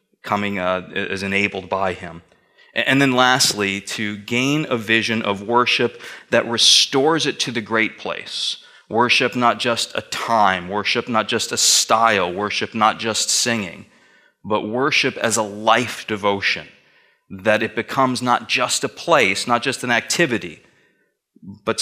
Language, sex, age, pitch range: English, male, 30-49, 105-130 Hz